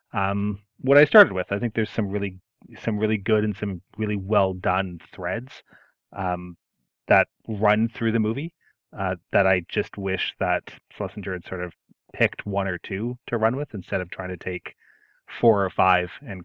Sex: male